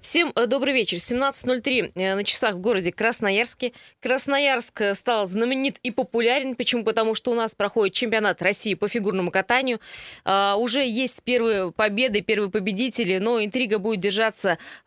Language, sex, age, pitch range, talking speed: Russian, female, 20-39, 200-245 Hz, 140 wpm